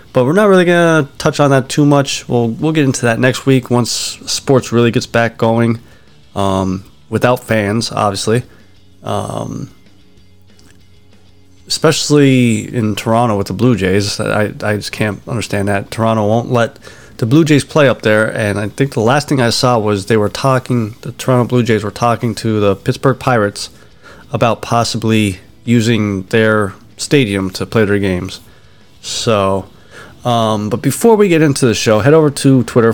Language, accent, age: English, American, 30-49